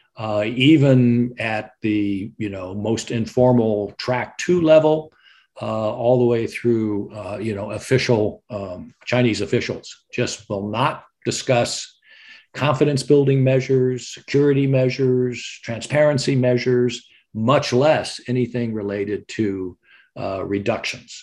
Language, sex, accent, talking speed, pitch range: English, male, American, 115 wpm, 100-125 Hz